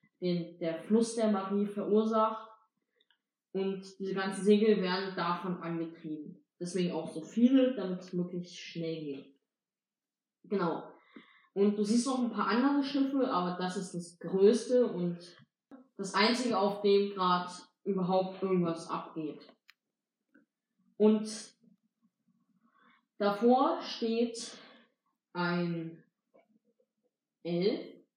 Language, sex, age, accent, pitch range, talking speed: German, female, 20-39, German, 180-235 Hz, 105 wpm